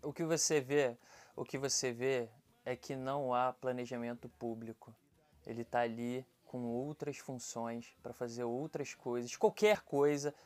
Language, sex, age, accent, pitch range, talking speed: Portuguese, male, 20-39, Brazilian, 150-220 Hz, 130 wpm